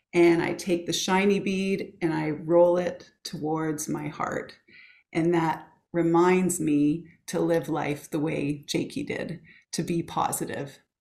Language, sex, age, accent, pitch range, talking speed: English, female, 30-49, American, 160-200 Hz, 145 wpm